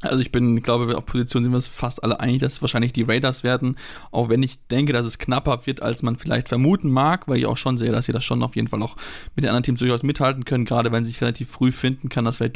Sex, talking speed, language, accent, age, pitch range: male, 290 wpm, German, German, 20-39, 115-135 Hz